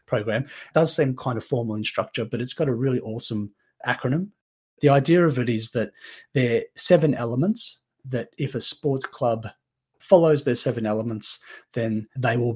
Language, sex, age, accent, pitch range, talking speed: English, male, 30-49, Australian, 115-145 Hz, 180 wpm